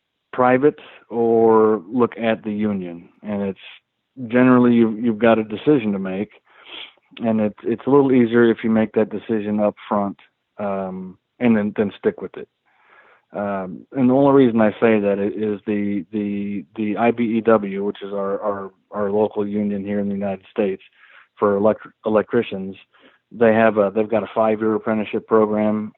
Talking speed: 165 wpm